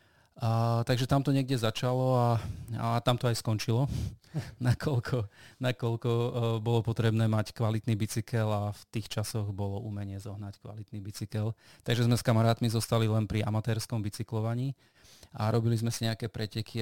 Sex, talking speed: male, 155 wpm